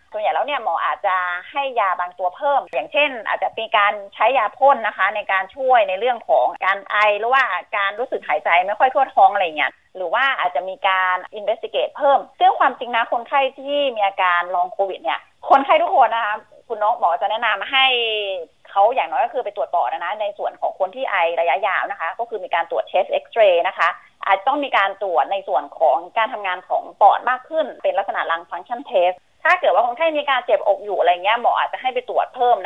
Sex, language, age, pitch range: female, Thai, 30-49, 195-285 Hz